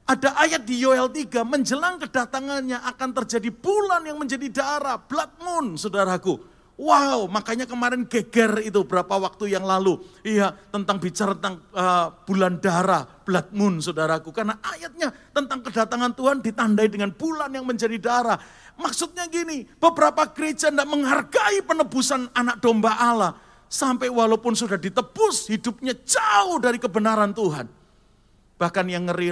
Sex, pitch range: male, 155-245 Hz